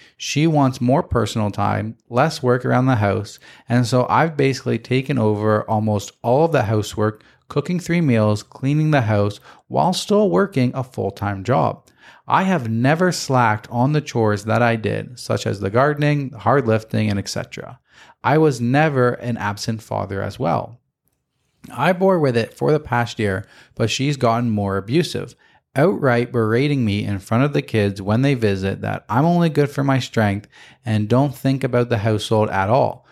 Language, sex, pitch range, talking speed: English, male, 105-135 Hz, 180 wpm